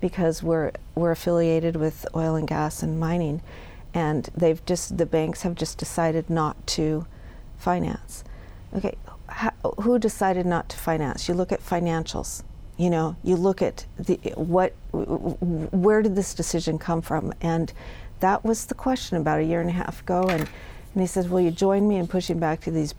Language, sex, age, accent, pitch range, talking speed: English, female, 50-69, American, 160-185 Hz, 185 wpm